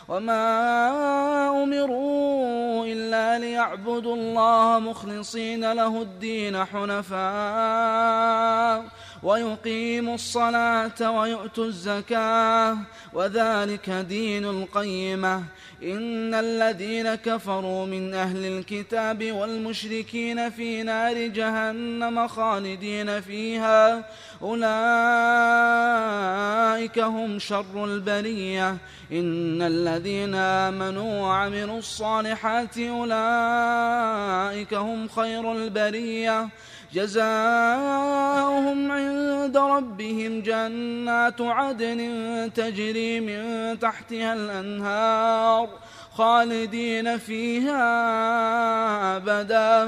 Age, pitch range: 20-39, 205-230 Hz